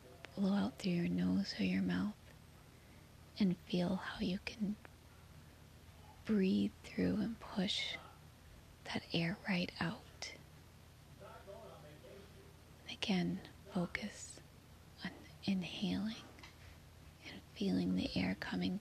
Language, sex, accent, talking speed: English, female, American, 95 wpm